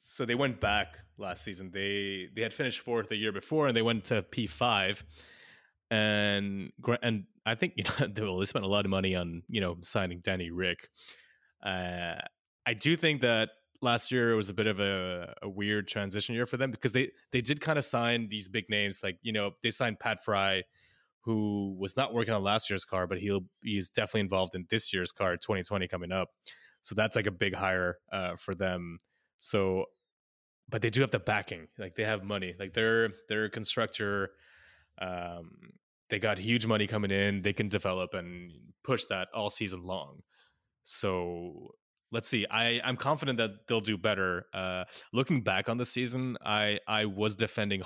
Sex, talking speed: male, 195 wpm